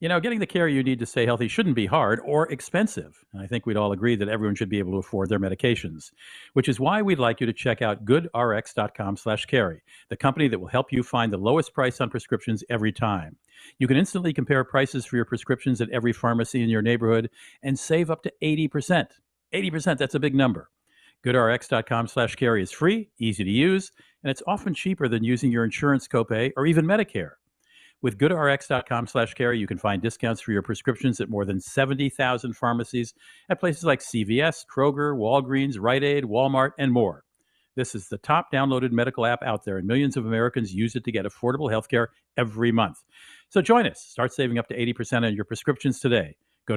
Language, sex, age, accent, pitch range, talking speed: English, male, 50-69, American, 115-140 Hz, 205 wpm